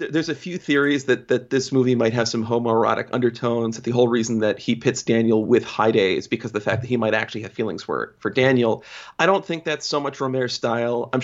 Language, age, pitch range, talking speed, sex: English, 30-49, 115-130 Hz, 250 wpm, male